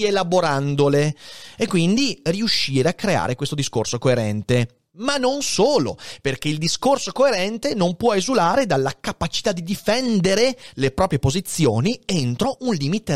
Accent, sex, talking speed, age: native, male, 130 wpm, 30-49